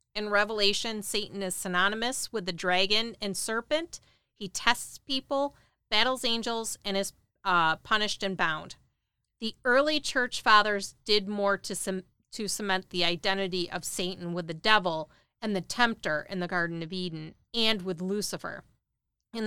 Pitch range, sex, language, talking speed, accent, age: 180-220 Hz, female, English, 150 wpm, American, 40-59